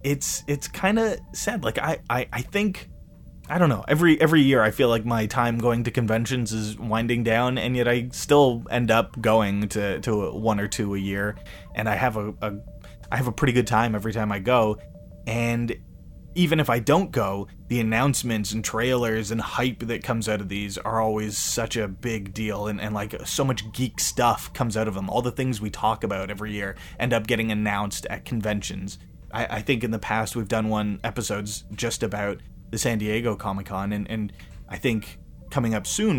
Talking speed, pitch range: 210 wpm, 100-120 Hz